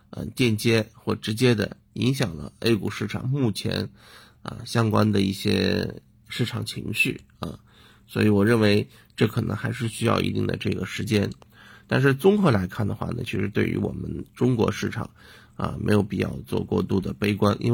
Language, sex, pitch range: Chinese, male, 105-120 Hz